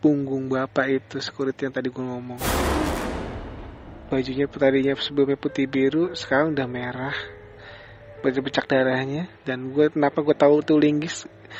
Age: 20-39